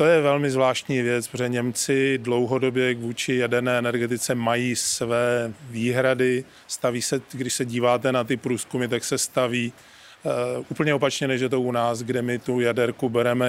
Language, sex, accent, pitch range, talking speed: Czech, male, native, 125-140 Hz, 170 wpm